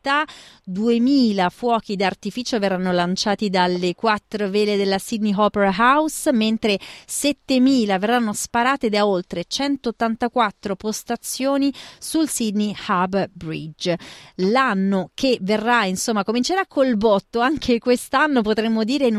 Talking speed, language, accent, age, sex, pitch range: 115 wpm, Italian, native, 30-49, female, 195-250 Hz